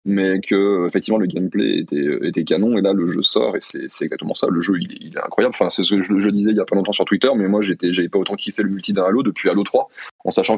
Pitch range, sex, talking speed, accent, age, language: 95-125 Hz, male, 305 wpm, French, 20-39, French